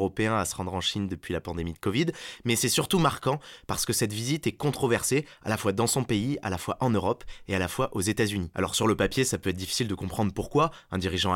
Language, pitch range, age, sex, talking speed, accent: French, 100-130 Hz, 20-39, male, 275 wpm, French